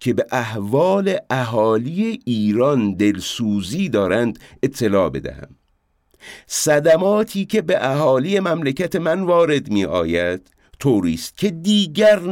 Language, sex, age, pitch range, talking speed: English, male, 50-69, 100-155 Hz, 100 wpm